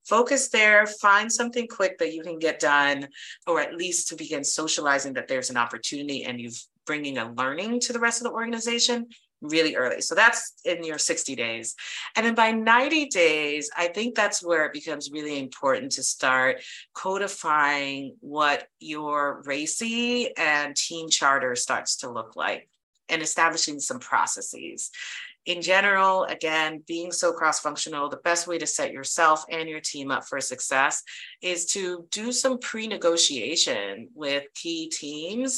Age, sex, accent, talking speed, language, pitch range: 30-49, female, American, 165 wpm, English, 145-195 Hz